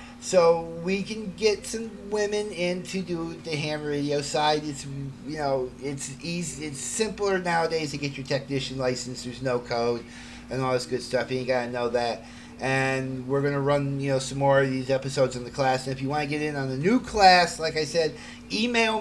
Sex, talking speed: male, 220 wpm